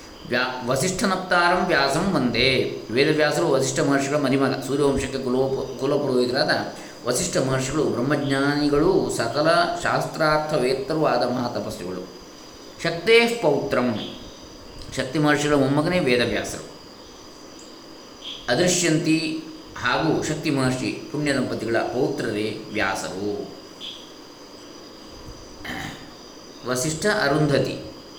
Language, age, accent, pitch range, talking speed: Kannada, 20-39, native, 130-160 Hz, 70 wpm